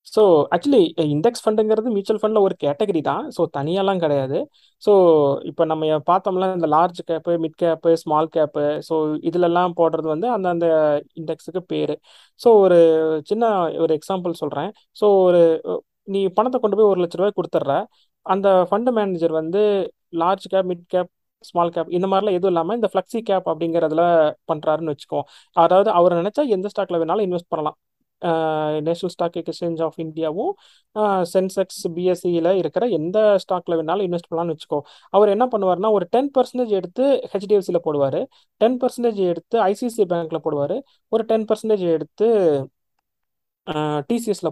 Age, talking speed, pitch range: 20-39, 145 wpm, 165-205 Hz